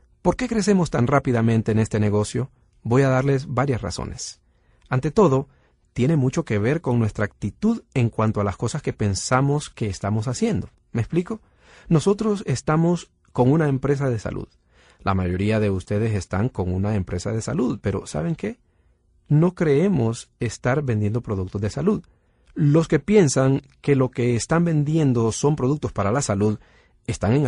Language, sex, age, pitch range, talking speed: Spanish, male, 40-59, 105-145 Hz, 165 wpm